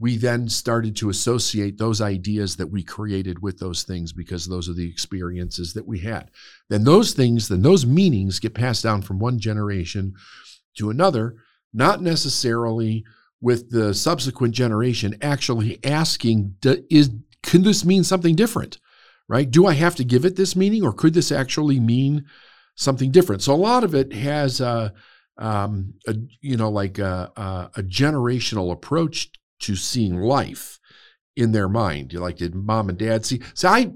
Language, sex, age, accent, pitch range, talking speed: English, male, 50-69, American, 100-150 Hz, 170 wpm